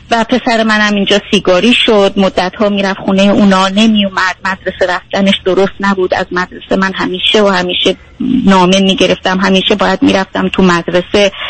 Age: 30-49